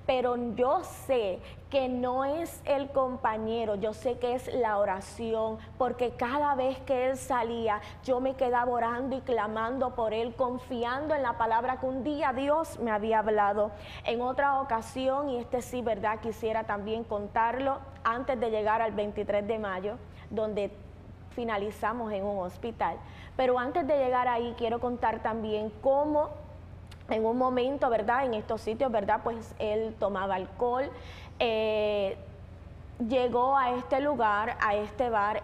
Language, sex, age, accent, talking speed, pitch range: Spanish, female, 20-39, American, 150 wpm, 215-255 Hz